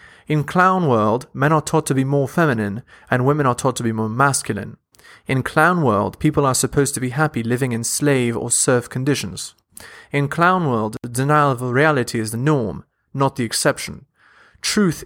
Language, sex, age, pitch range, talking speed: English, male, 30-49, 115-145 Hz, 185 wpm